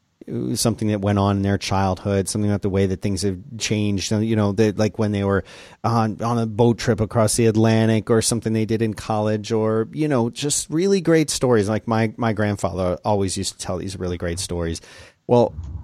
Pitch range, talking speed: 100-115 Hz, 210 wpm